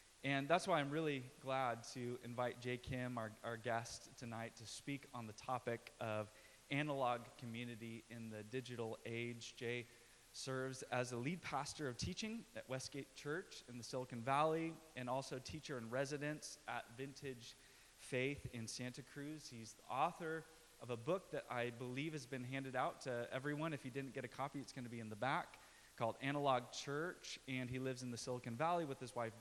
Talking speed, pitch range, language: 190 wpm, 120-155 Hz, English